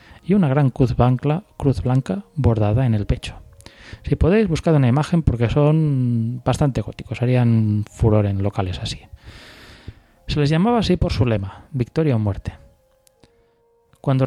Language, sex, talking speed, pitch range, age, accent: Spanish, male, 145 wpm, 110-145 Hz, 30-49, Spanish